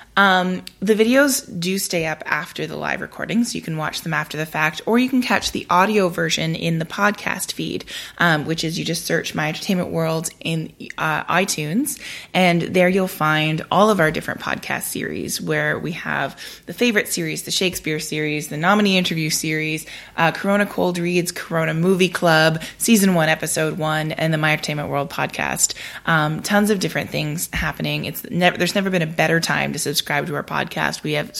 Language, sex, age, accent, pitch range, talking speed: English, female, 20-39, American, 155-200 Hz, 195 wpm